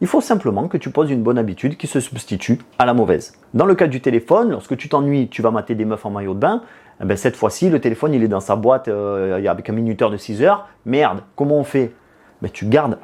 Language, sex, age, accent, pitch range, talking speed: French, male, 30-49, French, 110-160 Hz, 260 wpm